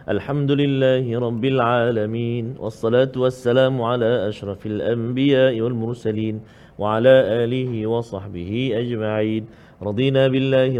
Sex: male